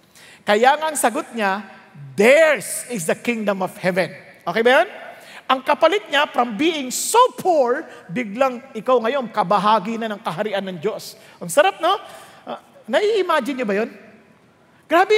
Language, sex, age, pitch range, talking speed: English, male, 50-69, 220-330 Hz, 150 wpm